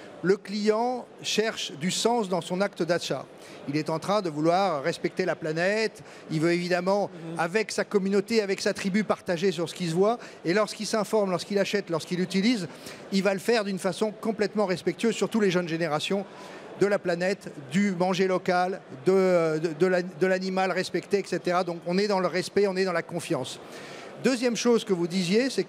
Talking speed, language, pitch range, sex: 195 wpm, French, 175-205 Hz, male